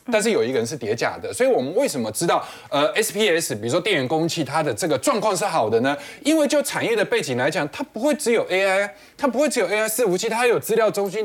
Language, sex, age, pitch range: Chinese, male, 20-39, 155-250 Hz